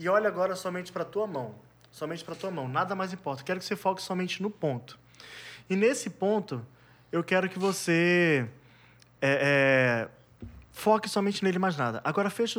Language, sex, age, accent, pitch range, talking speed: Portuguese, male, 20-39, Brazilian, 155-200 Hz, 185 wpm